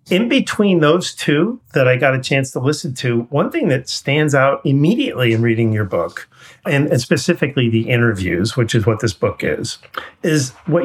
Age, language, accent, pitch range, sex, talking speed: 40-59, English, American, 115-155 Hz, male, 195 wpm